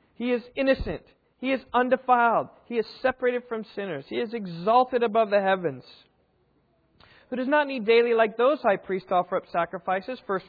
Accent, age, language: American, 40-59, English